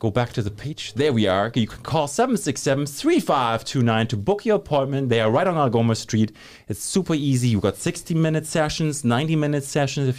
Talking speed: 200 wpm